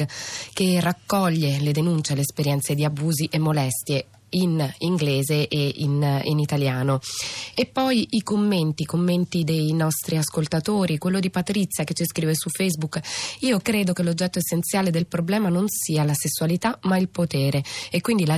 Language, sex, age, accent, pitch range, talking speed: Italian, female, 20-39, native, 150-180 Hz, 165 wpm